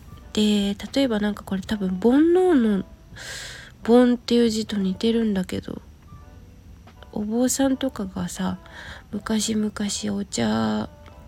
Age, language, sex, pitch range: 20-39, Japanese, female, 180-220 Hz